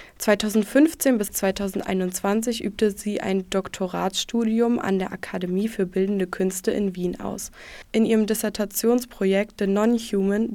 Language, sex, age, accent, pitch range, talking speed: German, female, 20-39, German, 195-225 Hz, 125 wpm